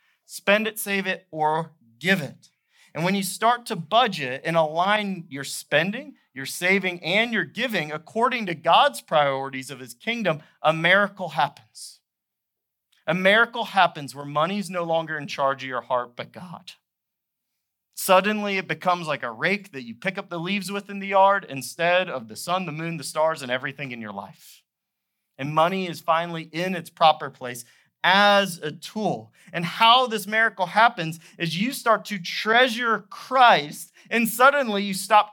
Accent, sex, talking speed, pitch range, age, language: American, male, 175 wpm, 165-225 Hz, 40-59, English